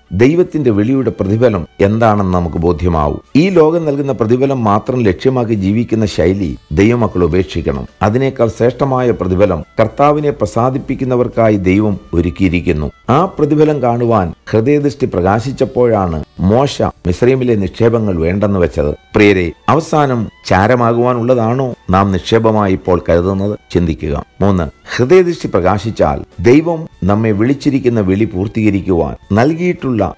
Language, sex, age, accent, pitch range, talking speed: Malayalam, male, 50-69, native, 90-120 Hz, 100 wpm